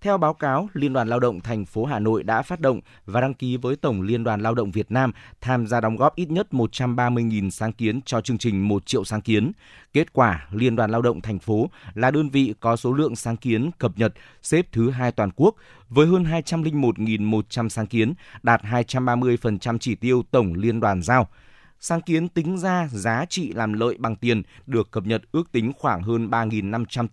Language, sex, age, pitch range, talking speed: Vietnamese, male, 20-39, 110-140 Hz, 210 wpm